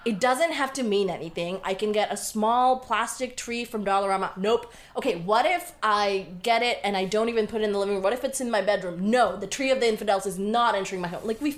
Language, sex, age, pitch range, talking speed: English, female, 20-39, 175-250 Hz, 265 wpm